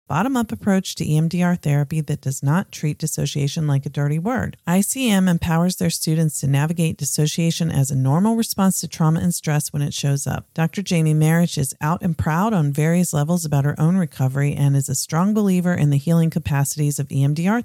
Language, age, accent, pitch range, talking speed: English, 40-59, American, 145-175 Hz, 200 wpm